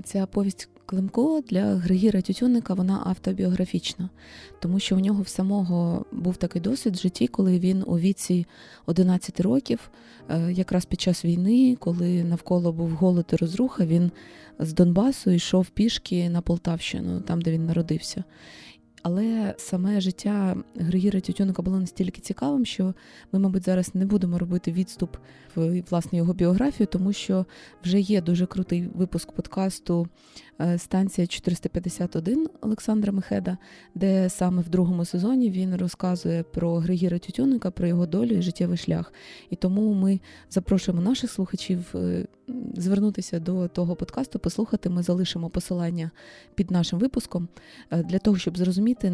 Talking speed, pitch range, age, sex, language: 140 wpm, 175-195 Hz, 20-39, female, Ukrainian